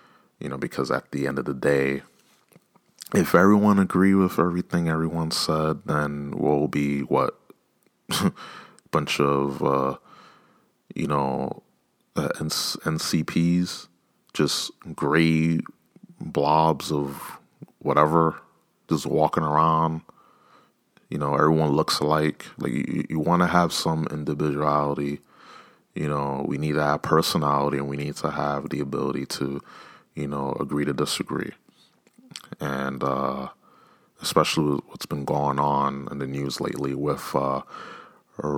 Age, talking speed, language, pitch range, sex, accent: 30-49, 130 wpm, English, 70-75 Hz, male, American